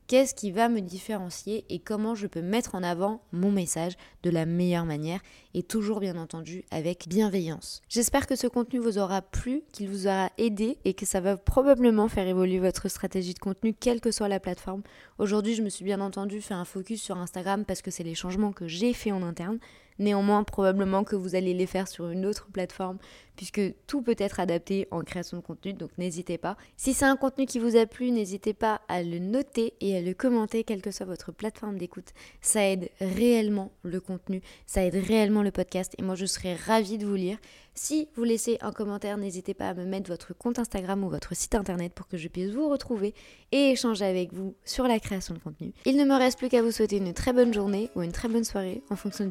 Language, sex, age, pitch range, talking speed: French, female, 20-39, 185-225 Hz, 230 wpm